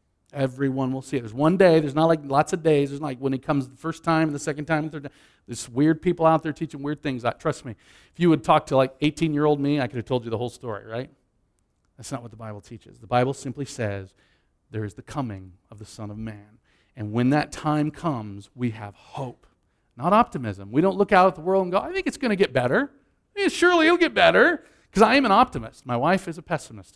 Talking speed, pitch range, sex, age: 265 wpm, 120-165 Hz, male, 40-59